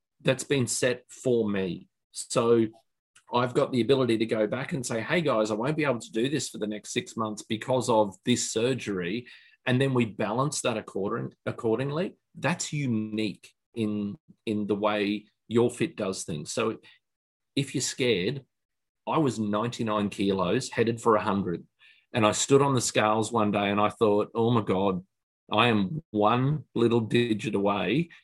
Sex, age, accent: male, 40-59, Australian